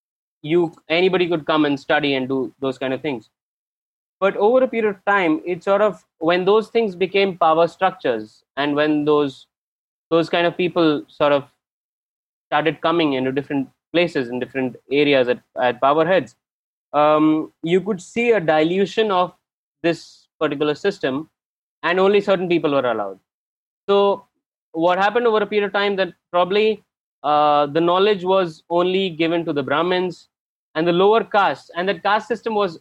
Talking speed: 165 wpm